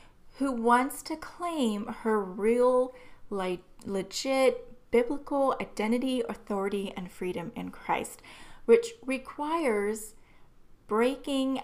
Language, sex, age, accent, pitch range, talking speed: English, female, 30-49, American, 195-260 Hz, 90 wpm